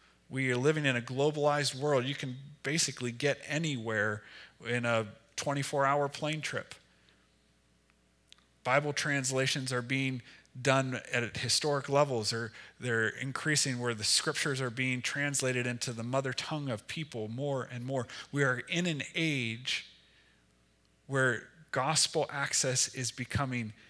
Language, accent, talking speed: English, American, 135 wpm